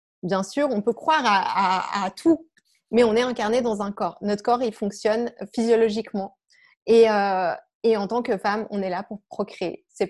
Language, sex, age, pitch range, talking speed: French, female, 20-39, 200-250 Hz, 200 wpm